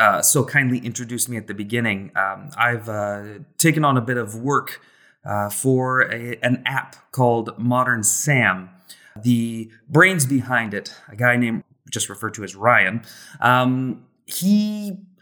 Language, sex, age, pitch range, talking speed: English, male, 30-49, 115-140 Hz, 150 wpm